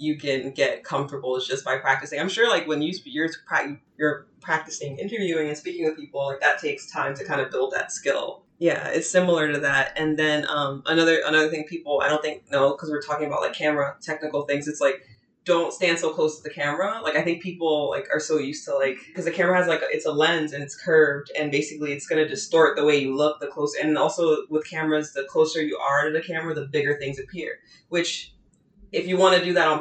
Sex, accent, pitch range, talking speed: female, American, 145-170 Hz, 240 wpm